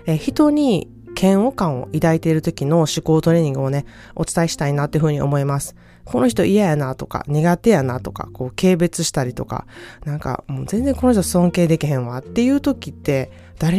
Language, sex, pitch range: Japanese, female, 135-190 Hz